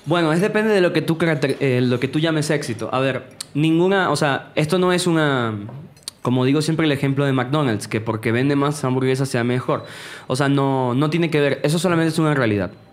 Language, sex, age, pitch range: Spanish, male, 20-39, 125-155 Hz